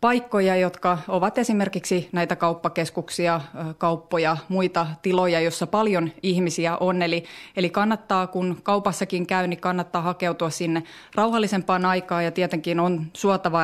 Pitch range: 165-195 Hz